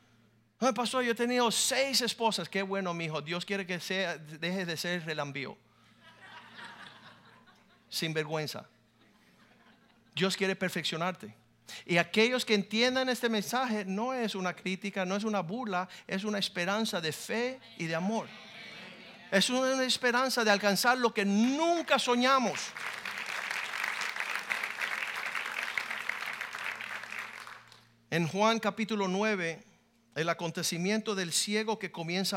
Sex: male